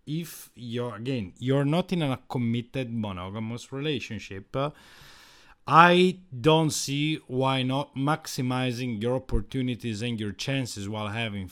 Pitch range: 115-155 Hz